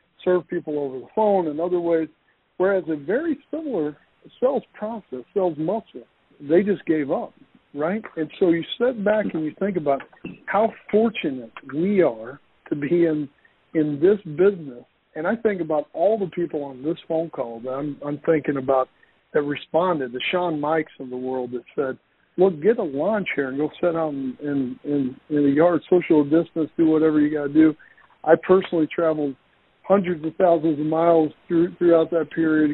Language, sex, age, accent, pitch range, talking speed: English, male, 60-79, American, 145-175 Hz, 185 wpm